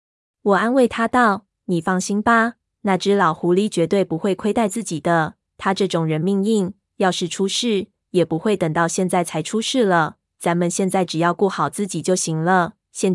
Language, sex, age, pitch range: Chinese, female, 20-39, 175-210 Hz